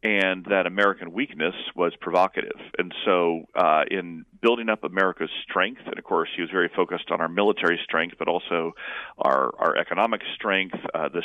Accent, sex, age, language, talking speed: American, male, 40-59, English, 175 wpm